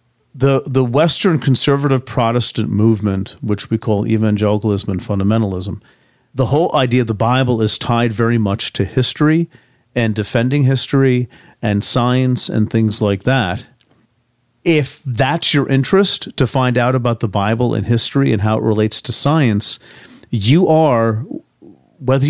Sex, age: male, 40-59